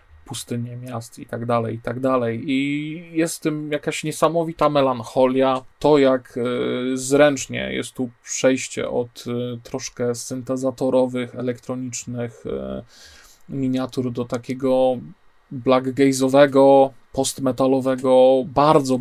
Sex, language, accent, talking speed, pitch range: male, Polish, native, 100 wpm, 125-140 Hz